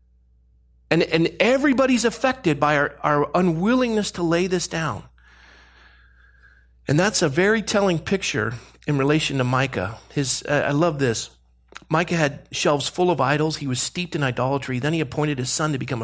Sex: male